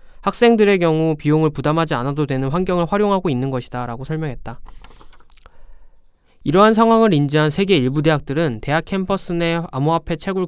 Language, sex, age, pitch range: Korean, male, 20-39, 125-185 Hz